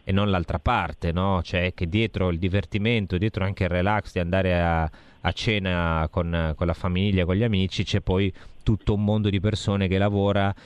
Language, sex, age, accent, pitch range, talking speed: Italian, male, 30-49, native, 85-100 Hz, 195 wpm